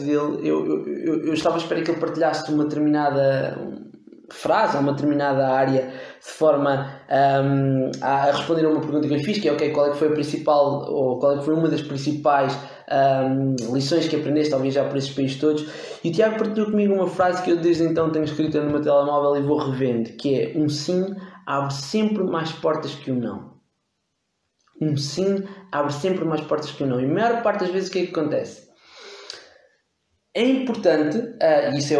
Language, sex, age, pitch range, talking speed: English, male, 20-39, 145-185 Hz, 205 wpm